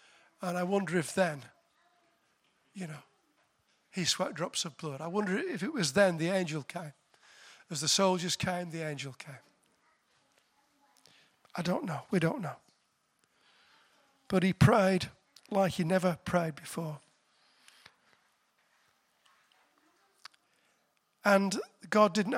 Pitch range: 165-200 Hz